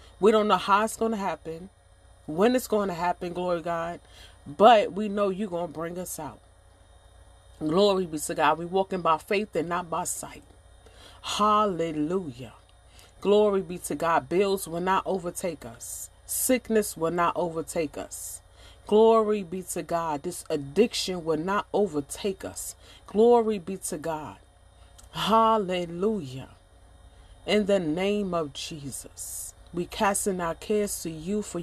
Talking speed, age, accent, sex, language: 150 wpm, 40-59, American, female, English